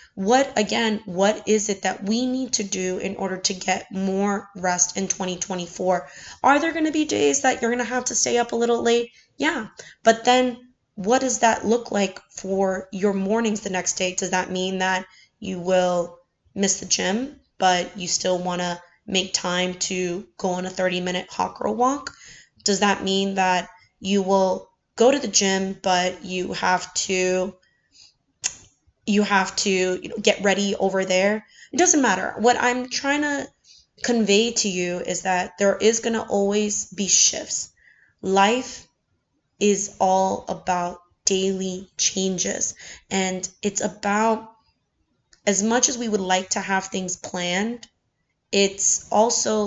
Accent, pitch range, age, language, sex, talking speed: American, 185-225 Hz, 20-39, English, female, 160 wpm